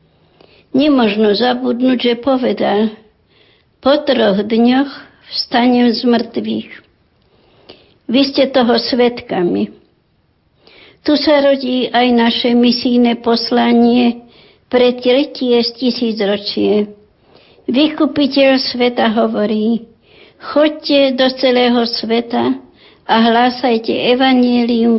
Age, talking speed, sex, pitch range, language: 60-79, 85 wpm, male, 225-260 Hz, Slovak